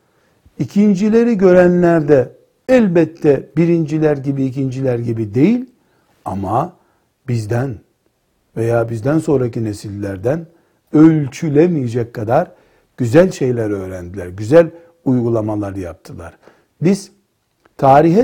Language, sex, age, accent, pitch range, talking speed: Turkish, male, 60-79, native, 115-165 Hz, 80 wpm